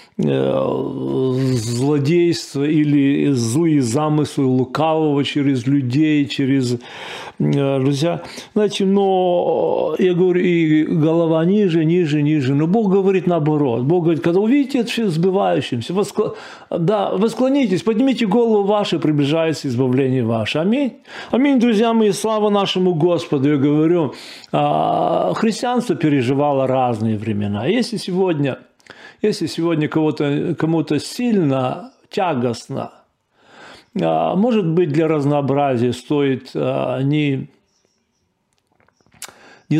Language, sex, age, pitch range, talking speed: Russian, male, 40-59, 135-185 Hz, 100 wpm